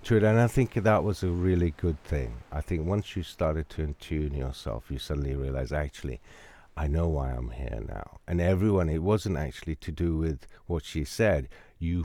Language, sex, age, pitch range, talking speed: English, male, 60-79, 75-90 Hz, 195 wpm